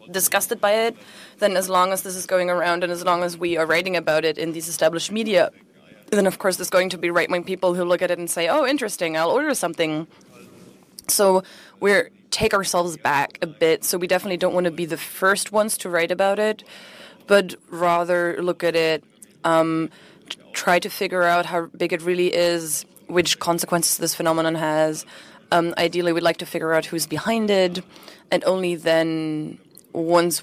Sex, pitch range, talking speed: female, 165-185 Hz, 195 wpm